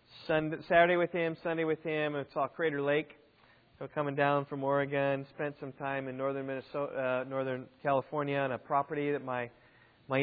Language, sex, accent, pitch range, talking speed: English, male, American, 125-150 Hz, 180 wpm